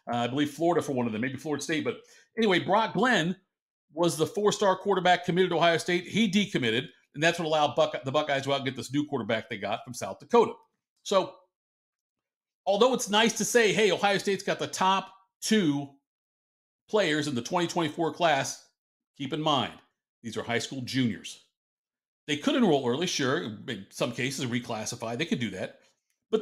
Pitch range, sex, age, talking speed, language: 150-210 Hz, male, 50-69, 190 wpm, English